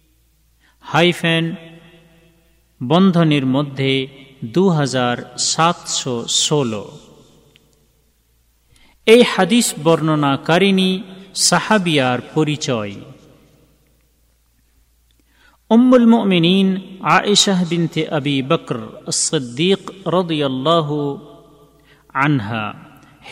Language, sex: Bengali, male